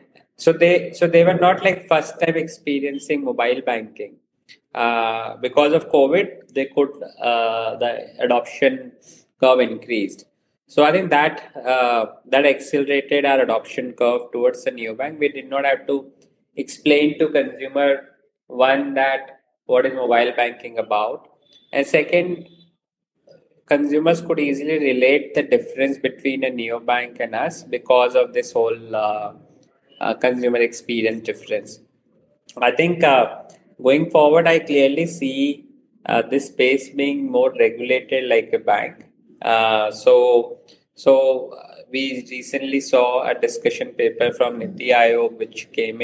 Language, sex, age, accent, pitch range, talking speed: English, male, 20-39, Indian, 120-170 Hz, 140 wpm